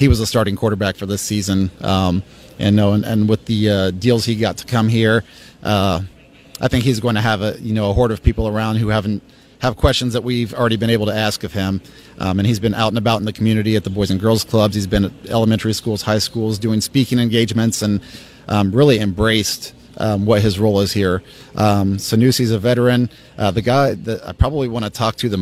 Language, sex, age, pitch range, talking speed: English, male, 30-49, 105-120 Hz, 240 wpm